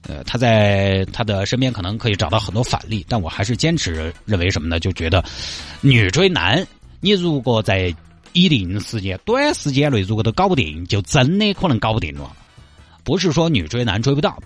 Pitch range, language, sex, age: 95-140 Hz, Chinese, male, 30-49